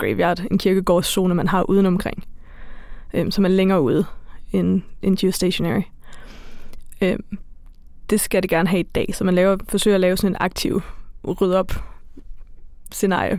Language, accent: Danish, native